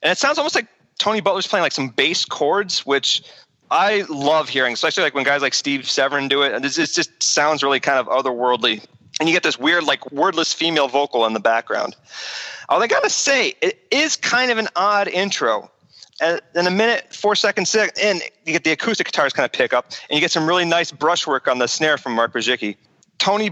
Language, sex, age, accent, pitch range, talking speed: English, male, 30-49, American, 140-195 Hz, 220 wpm